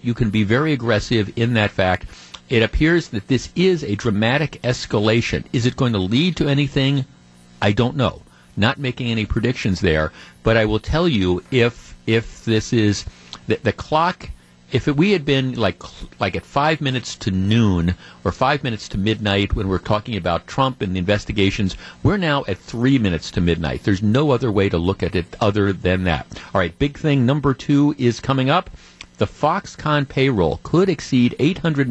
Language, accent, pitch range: English, American, 95-135 Hz